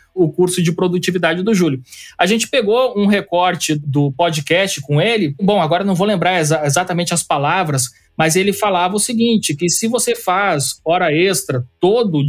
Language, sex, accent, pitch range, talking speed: Portuguese, male, Brazilian, 155-195 Hz, 170 wpm